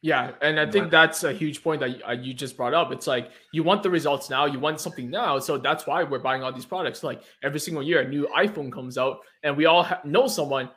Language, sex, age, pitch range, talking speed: English, male, 20-39, 140-190 Hz, 255 wpm